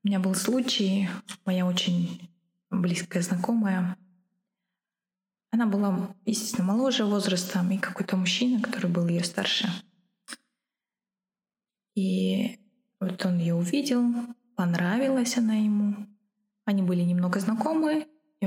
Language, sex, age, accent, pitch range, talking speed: Russian, female, 20-39, native, 180-220 Hz, 105 wpm